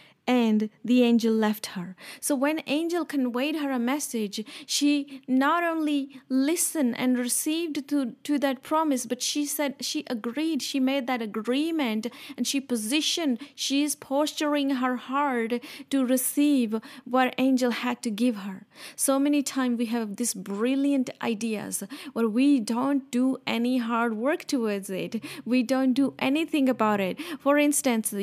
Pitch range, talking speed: 240-280 Hz, 155 wpm